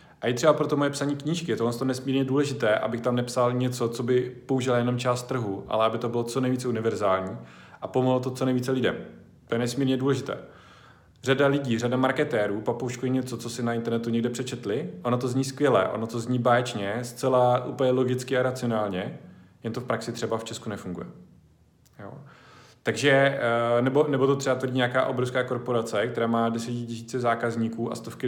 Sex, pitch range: male, 115-130 Hz